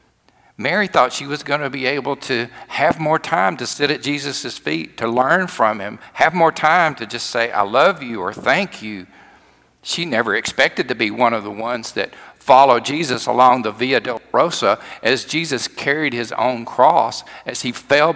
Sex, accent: male, American